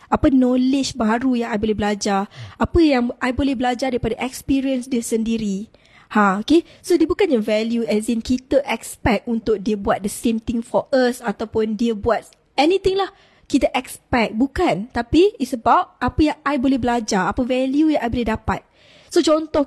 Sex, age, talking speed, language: female, 20-39, 175 wpm, Malay